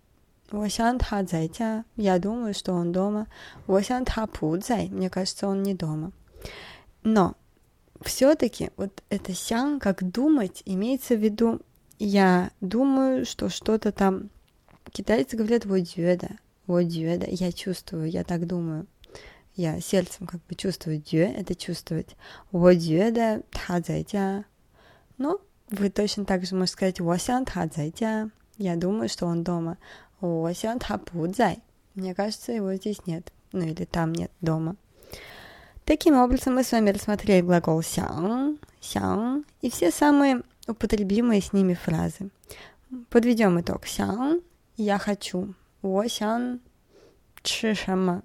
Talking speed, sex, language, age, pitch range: 115 wpm, female, Russian, 20-39, 175-220 Hz